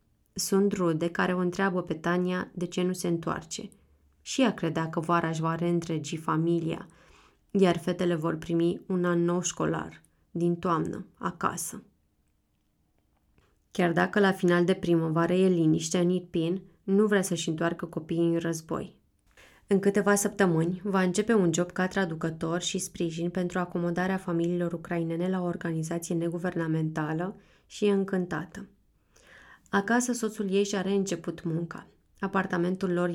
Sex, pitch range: female, 170-195 Hz